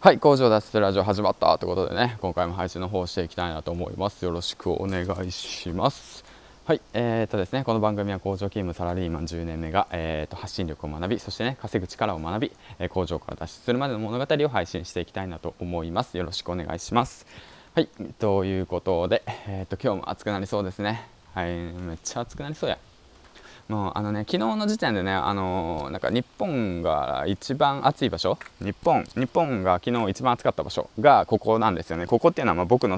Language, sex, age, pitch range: Japanese, male, 20-39, 90-115 Hz